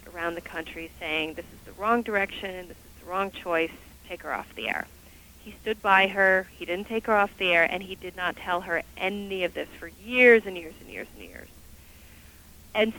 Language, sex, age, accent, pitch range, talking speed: English, female, 40-59, American, 165-210 Hz, 220 wpm